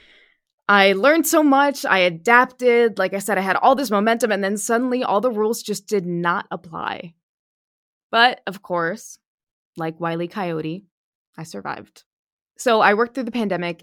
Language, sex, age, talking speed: English, female, 20-39, 170 wpm